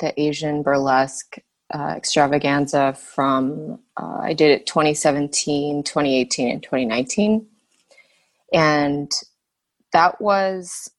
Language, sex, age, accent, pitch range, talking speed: English, female, 20-39, American, 145-180 Hz, 95 wpm